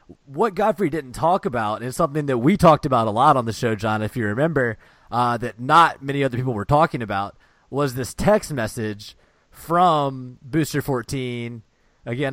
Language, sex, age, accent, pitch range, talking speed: English, male, 30-49, American, 120-150 Hz, 185 wpm